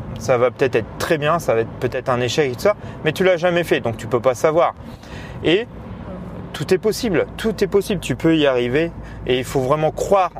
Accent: French